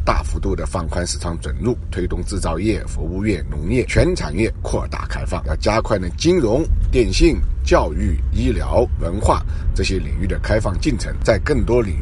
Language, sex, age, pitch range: Chinese, male, 50-69, 75-95 Hz